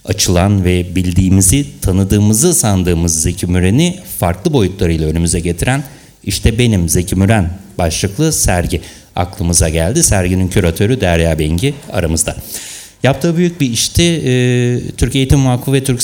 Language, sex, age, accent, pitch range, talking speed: Turkish, male, 60-79, native, 90-130 Hz, 125 wpm